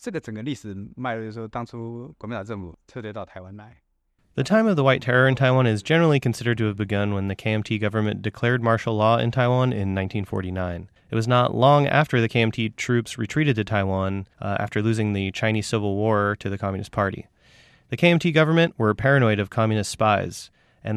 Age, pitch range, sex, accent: 30-49, 100-125 Hz, male, American